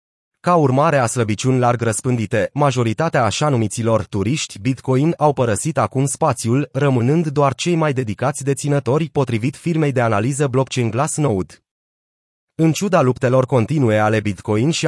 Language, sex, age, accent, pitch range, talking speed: Romanian, male, 30-49, native, 120-150 Hz, 135 wpm